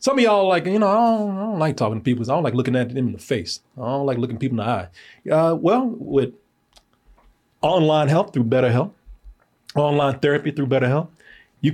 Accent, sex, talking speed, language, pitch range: American, male, 225 wpm, English, 115-155 Hz